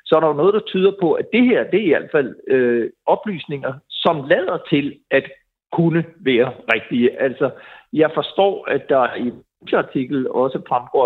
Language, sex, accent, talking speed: Danish, male, native, 185 wpm